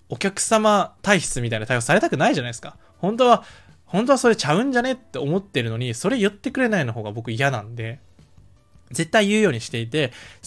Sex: male